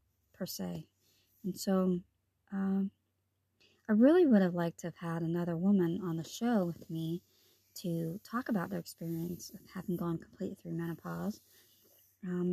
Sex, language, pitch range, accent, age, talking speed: male, English, 170-205 Hz, American, 30-49, 155 wpm